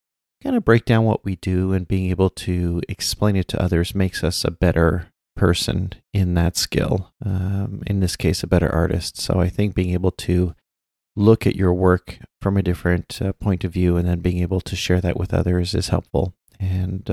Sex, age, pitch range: male, 30-49, 90-105 Hz